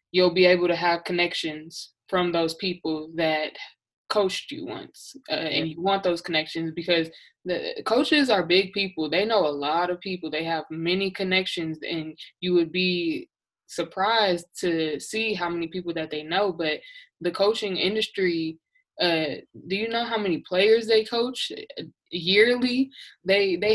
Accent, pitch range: American, 170-205 Hz